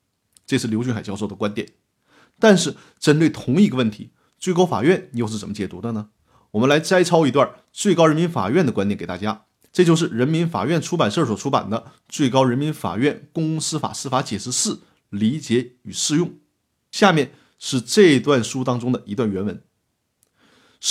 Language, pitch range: Chinese, 125-185 Hz